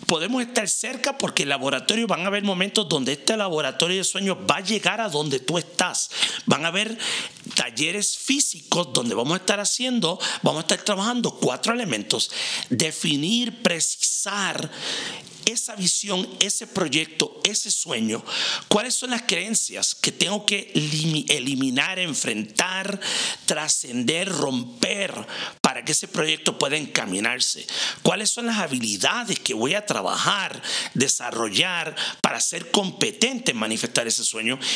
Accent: Mexican